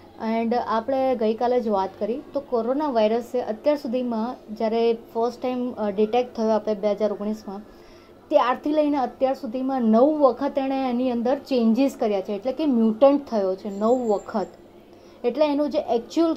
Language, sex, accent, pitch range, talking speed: Gujarati, female, native, 220-265 Hz, 130 wpm